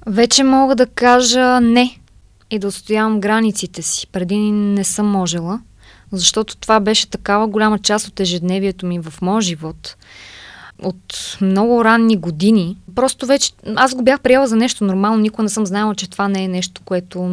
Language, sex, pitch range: Bulgarian, female, 180-220 Hz